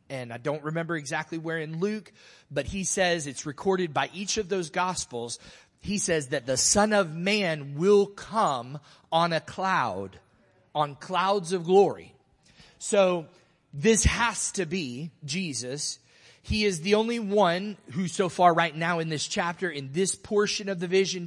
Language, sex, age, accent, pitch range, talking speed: English, male, 30-49, American, 150-200 Hz, 165 wpm